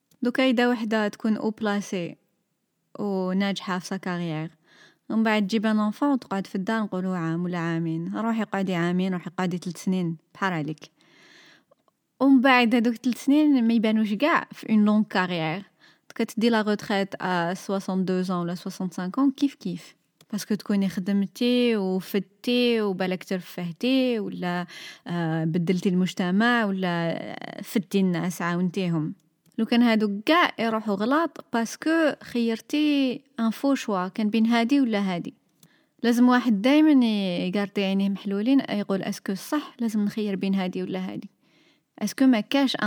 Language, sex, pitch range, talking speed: Arabic, female, 185-245 Hz, 145 wpm